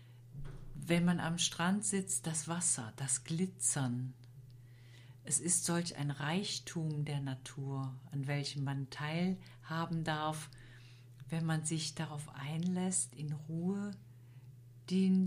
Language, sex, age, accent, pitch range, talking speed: German, female, 50-69, German, 125-165 Hz, 115 wpm